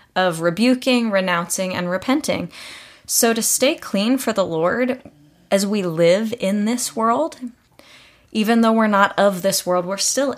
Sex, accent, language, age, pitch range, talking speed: female, American, English, 20-39, 180-230 Hz, 155 wpm